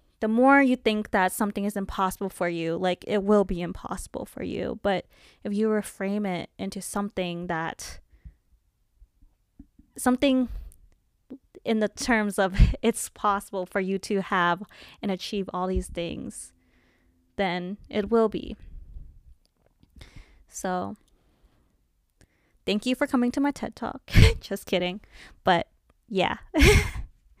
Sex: female